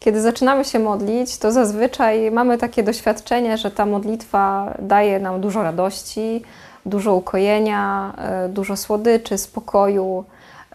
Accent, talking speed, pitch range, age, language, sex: native, 115 wpm, 200-235 Hz, 20-39, Polish, female